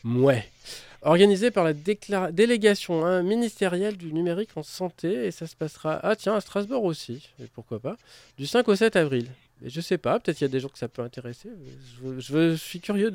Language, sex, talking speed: French, male, 220 wpm